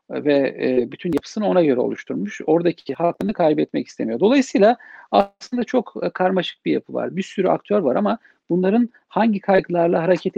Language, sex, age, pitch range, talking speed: Turkish, male, 50-69, 150-225 Hz, 150 wpm